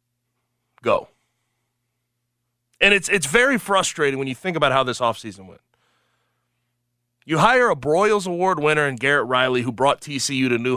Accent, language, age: American, English, 30-49